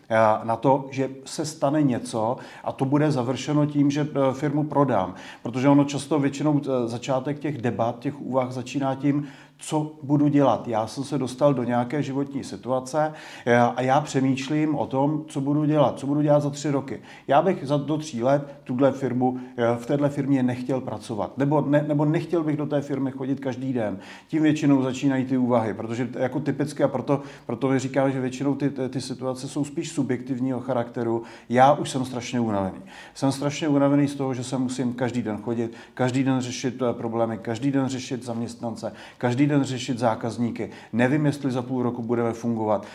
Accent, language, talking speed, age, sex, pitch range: native, Czech, 180 wpm, 40-59, male, 120-145 Hz